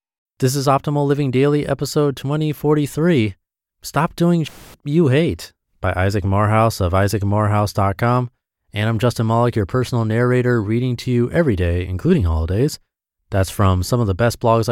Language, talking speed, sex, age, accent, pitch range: English, 155 wpm, male, 30-49, American, 95-125 Hz